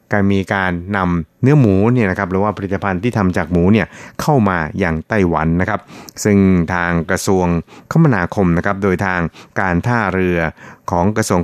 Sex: male